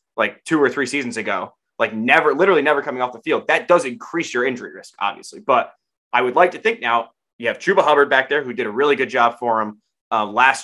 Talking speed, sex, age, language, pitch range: 250 wpm, male, 20-39, English, 120-175 Hz